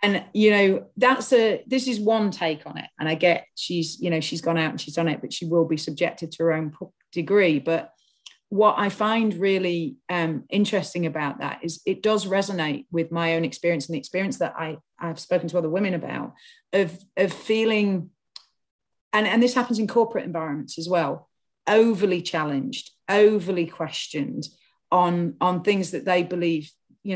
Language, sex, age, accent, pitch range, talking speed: English, female, 40-59, British, 160-200 Hz, 185 wpm